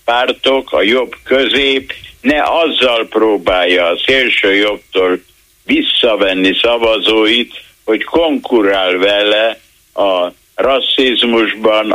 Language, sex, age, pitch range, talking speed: Hungarian, male, 60-79, 105-165 Hz, 80 wpm